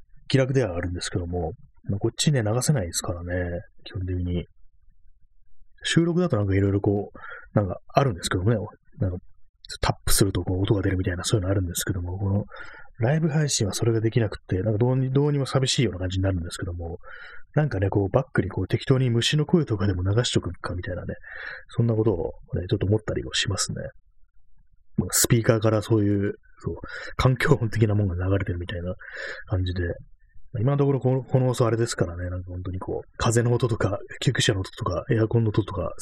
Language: Japanese